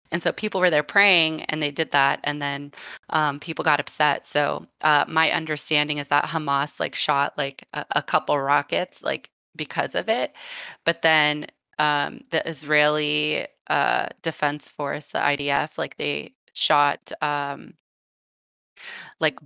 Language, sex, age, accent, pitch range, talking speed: English, female, 20-39, American, 145-165 Hz, 150 wpm